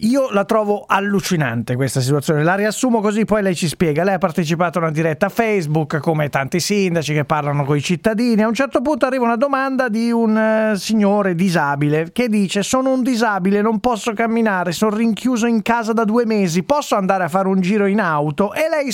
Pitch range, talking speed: 180-260 Hz, 205 wpm